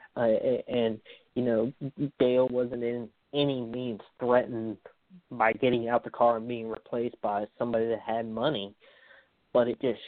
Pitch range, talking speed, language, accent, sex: 115-125 Hz, 155 wpm, English, American, male